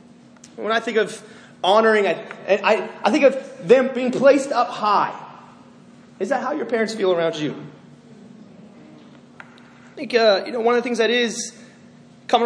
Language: English